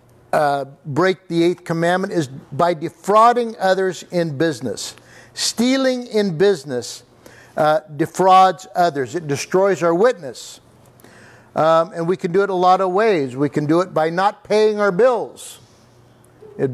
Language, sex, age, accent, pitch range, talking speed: English, male, 60-79, American, 160-205 Hz, 145 wpm